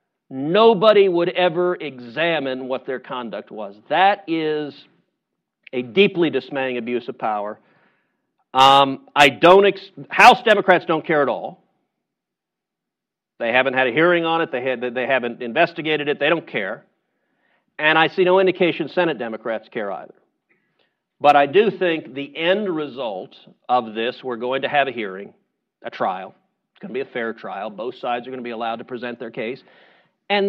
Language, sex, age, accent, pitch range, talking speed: English, male, 50-69, American, 145-220 Hz, 165 wpm